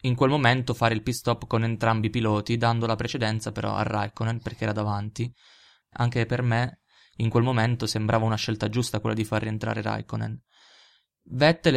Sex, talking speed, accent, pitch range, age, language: male, 185 wpm, native, 110-120 Hz, 20-39, Italian